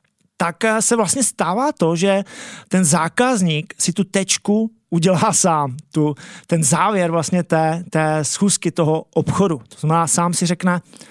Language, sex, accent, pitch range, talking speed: Czech, male, native, 165-210 Hz, 145 wpm